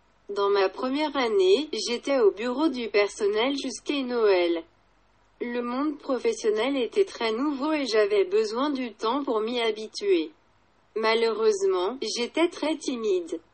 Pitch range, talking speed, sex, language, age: 220-365 Hz, 130 wpm, female, English, 40-59